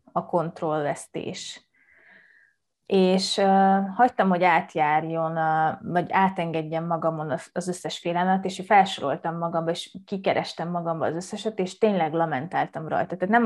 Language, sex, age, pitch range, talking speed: Hungarian, female, 20-39, 165-200 Hz, 125 wpm